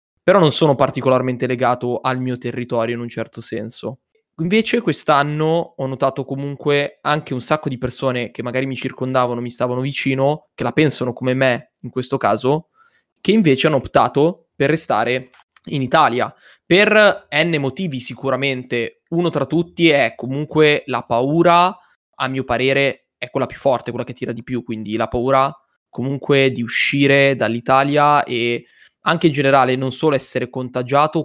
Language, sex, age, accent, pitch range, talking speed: Italian, male, 20-39, native, 120-140 Hz, 160 wpm